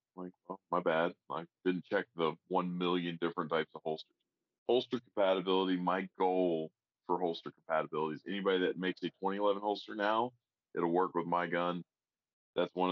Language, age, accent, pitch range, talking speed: English, 30-49, American, 85-100 Hz, 165 wpm